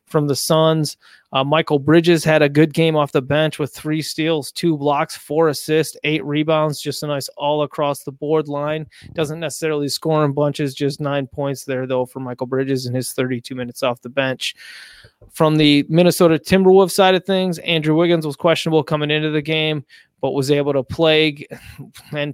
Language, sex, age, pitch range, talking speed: English, male, 20-39, 145-170 Hz, 185 wpm